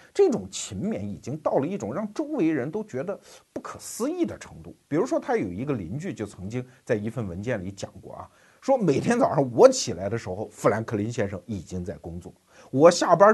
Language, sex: Chinese, male